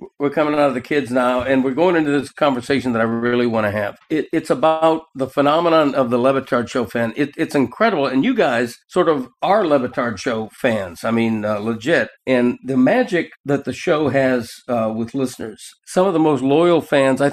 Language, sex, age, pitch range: English, male, 60-79, 120-145 Hz